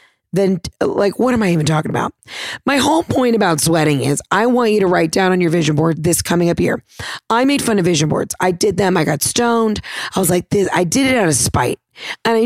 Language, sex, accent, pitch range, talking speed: English, female, American, 145-190 Hz, 250 wpm